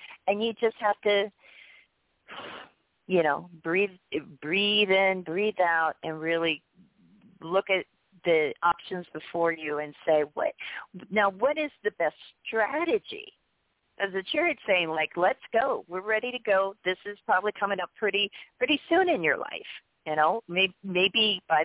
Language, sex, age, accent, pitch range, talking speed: English, female, 40-59, American, 170-225 Hz, 155 wpm